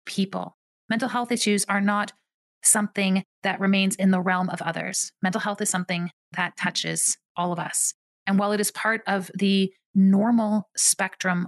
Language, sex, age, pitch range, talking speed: English, female, 30-49, 180-210 Hz, 165 wpm